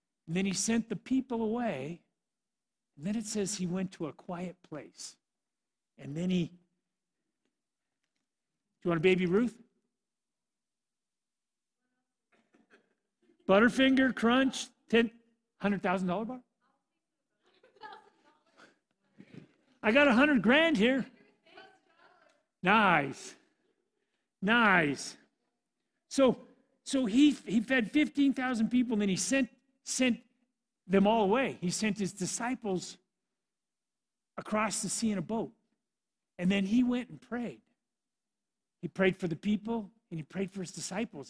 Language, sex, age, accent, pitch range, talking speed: English, male, 50-69, American, 190-250 Hz, 115 wpm